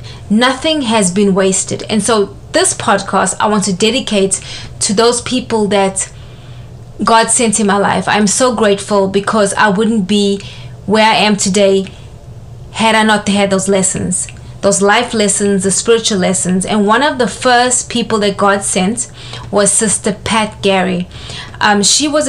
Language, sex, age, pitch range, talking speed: English, female, 20-39, 195-225 Hz, 160 wpm